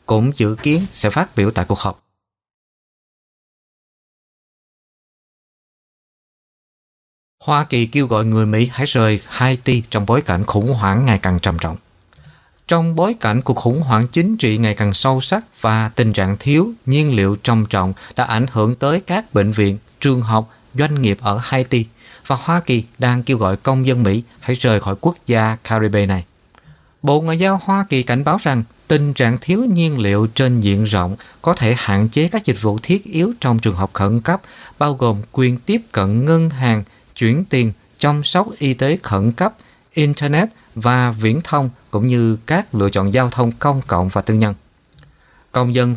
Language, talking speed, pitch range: Vietnamese, 180 wpm, 110-145 Hz